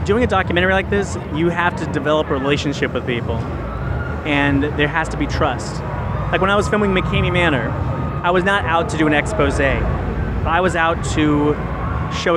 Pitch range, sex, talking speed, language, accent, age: 115-165 Hz, male, 190 wpm, English, American, 30-49